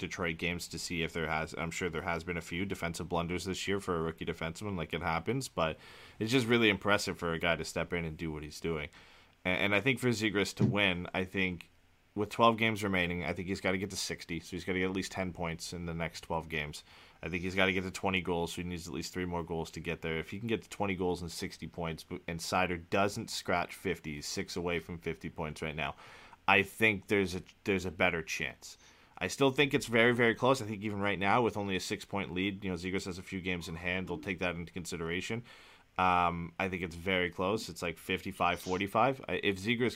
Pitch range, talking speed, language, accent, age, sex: 85-100 Hz, 255 wpm, English, American, 30-49, male